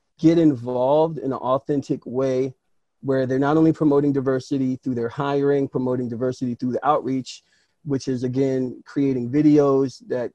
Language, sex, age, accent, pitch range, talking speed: English, male, 30-49, American, 125-145 Hz, 150 wpm